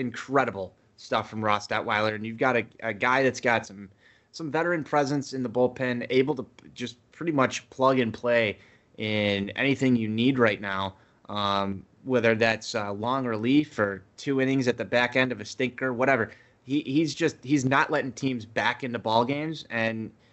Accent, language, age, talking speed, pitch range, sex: American, English, 20-39, 185 wpm, 110-130 Hz, male